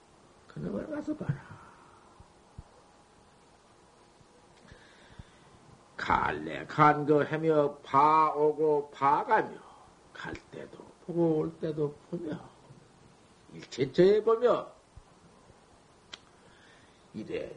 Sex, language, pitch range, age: male, Korean, 150-210 Hz, 50-69